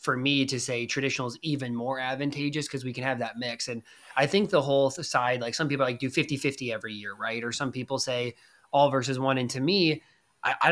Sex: male